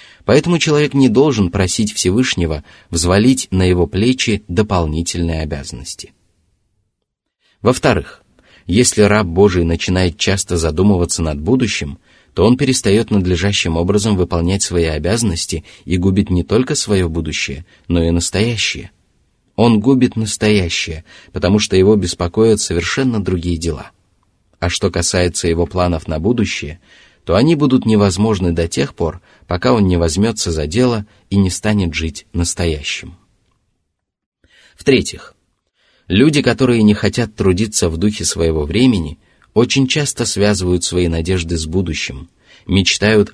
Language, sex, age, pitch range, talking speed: Russian, male, 30-49, 85-110 Hz, 125 wpm